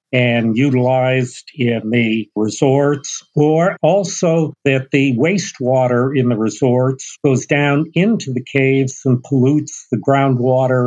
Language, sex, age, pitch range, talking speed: English, male, 50-69, 130-155 Hz, 120 wpm